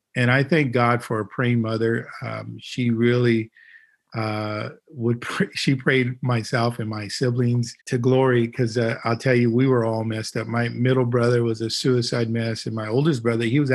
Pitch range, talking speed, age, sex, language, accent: 115-135 Hz, 195 wpm, 50-69, male, English, American